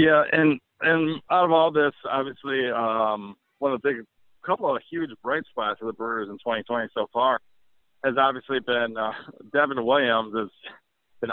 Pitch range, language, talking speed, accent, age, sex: 110-130 Hz, English, 175 wpm, American, 40-59, male